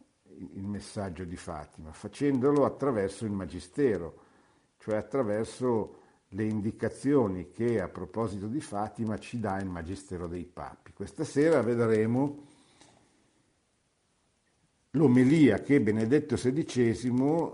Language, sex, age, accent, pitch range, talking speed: Italian, male, 60-79, native, 90-120 Hz, 105 wpm